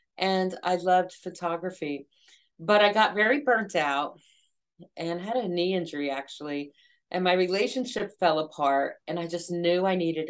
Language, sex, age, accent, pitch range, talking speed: English, female, 40-59, American, 165-190 Hz, 155 wpm